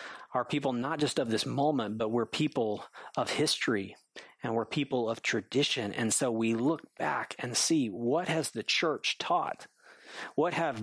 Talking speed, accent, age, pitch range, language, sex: 170 wpm, American, 40-59, 120-155 Hz, English, male